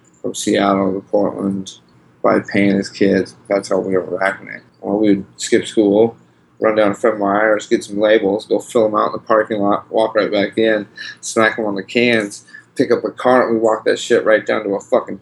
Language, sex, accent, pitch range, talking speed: English, male, American, 95-120 Hz, 220 wpm